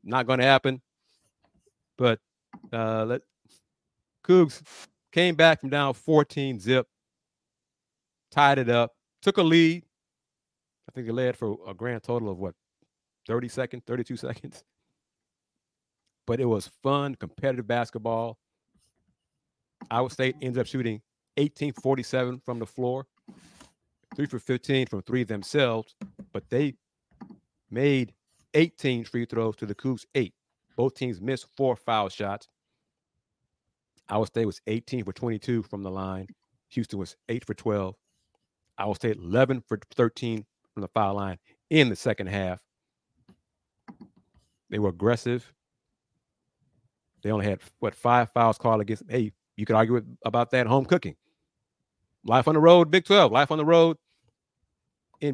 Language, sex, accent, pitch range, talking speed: English, male, American, 110-135 Hz, 140 wpm